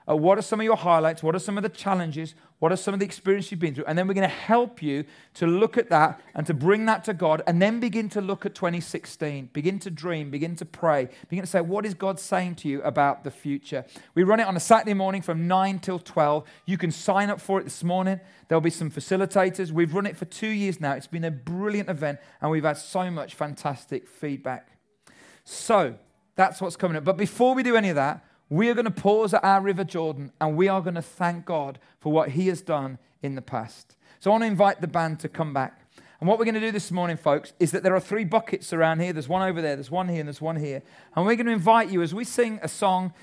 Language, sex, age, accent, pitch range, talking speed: English, male, 40-59, British, 160-200 Hz, 265 wpm